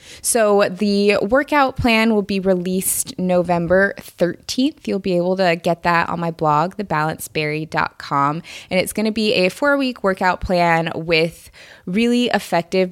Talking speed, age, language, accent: 145 wpm, 20-39, English, American